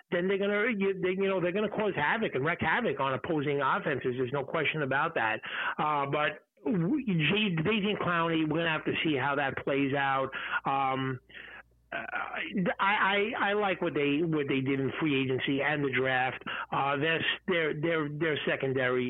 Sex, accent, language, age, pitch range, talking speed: male, American, English, 50-69, 135-160 Hz, 180 wpm